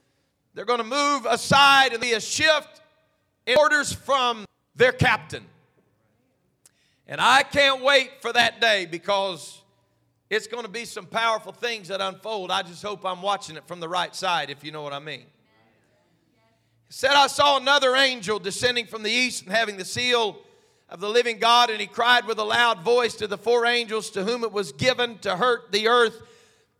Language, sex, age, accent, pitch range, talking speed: English, male, 40-59, American, 190-245 Hz, 190 wpm